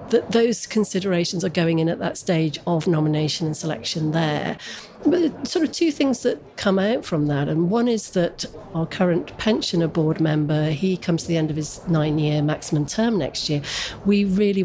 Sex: female